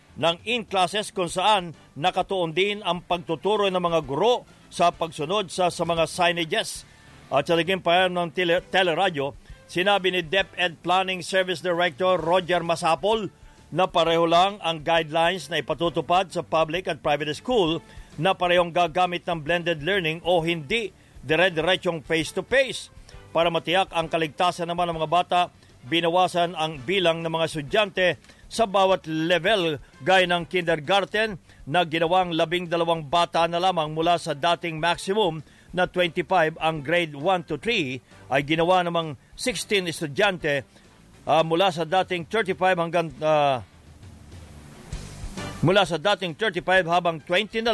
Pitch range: 160-185 Hz